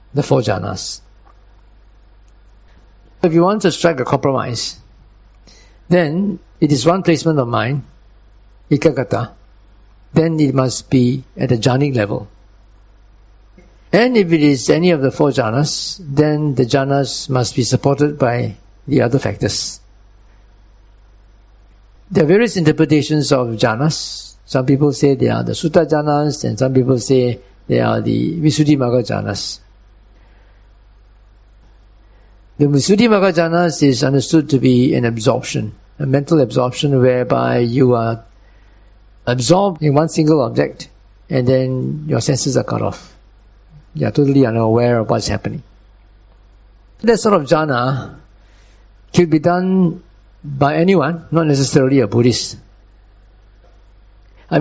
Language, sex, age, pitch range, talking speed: English, male, 60-79, 105-150 Hz, 130 wpm